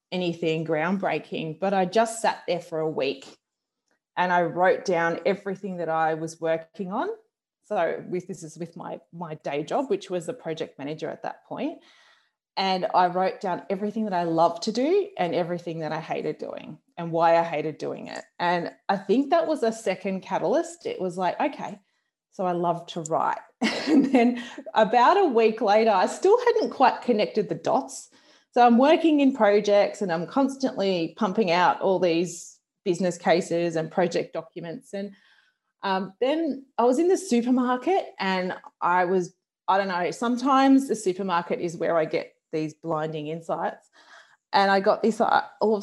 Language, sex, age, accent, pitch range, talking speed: English, female, 30-49, Australian, 175-230 Hz, 180 wpm